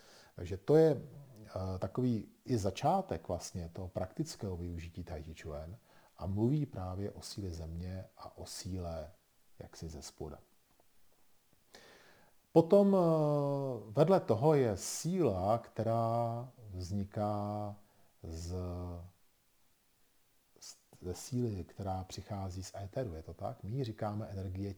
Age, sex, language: 40-59, male, Czech